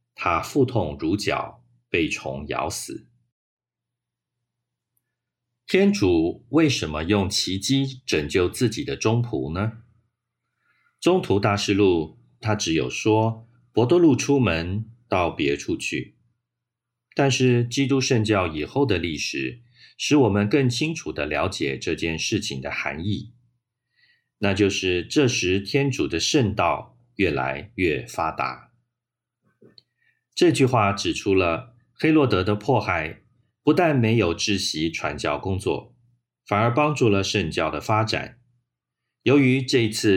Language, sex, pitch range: Chinese, male, 95-125 Hz